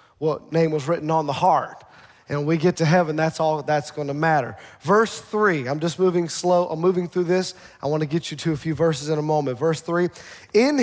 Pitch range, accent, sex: 155-200 Hz, American, male